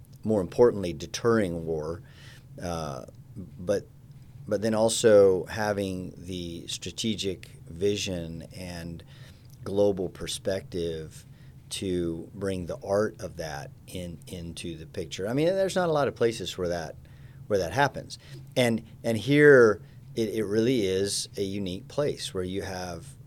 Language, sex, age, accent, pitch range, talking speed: English, male, 40-59, American, 90-125 Hz, 135 wpm